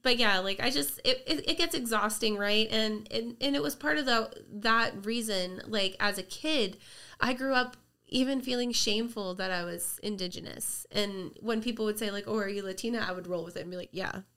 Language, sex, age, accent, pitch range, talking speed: English, female, 20-39, American, 175-220 Hz, 225 wpm